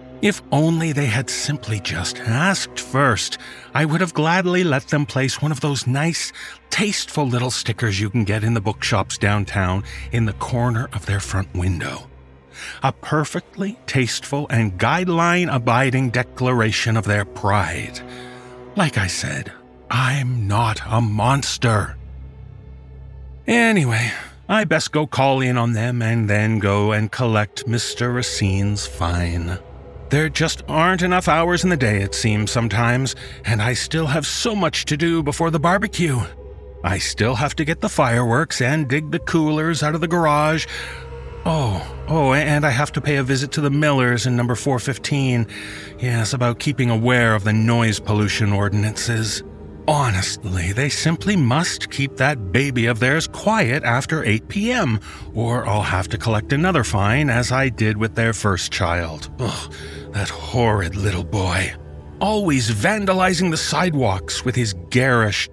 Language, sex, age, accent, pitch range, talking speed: English, male, 40-59, American, 105-150 Hz, 155 wpm